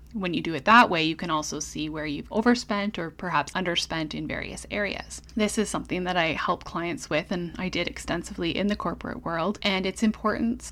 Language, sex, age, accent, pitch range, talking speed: English, female, 10-29, American, 165-205 Hz, 215 wpm